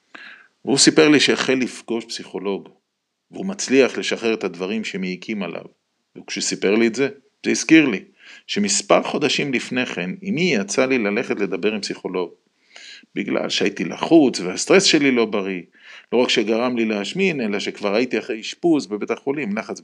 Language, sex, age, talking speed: Hebrew, male, 40-59, 155 wpm